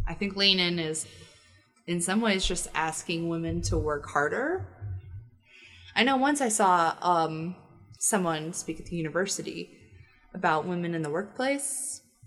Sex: female